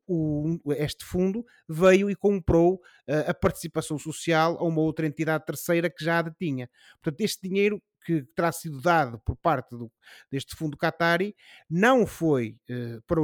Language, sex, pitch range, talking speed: Portuguese, male, 145-175 Hz, 165 wpm